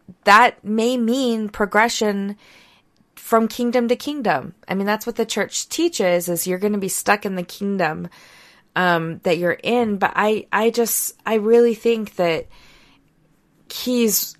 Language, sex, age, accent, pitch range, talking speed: English, female, 20-39, American, 170-215 Hz, 155 wpm